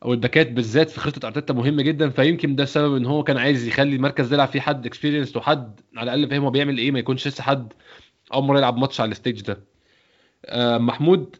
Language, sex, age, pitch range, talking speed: Arabic, male, 20-39, 125-160 Hz, 210 wpm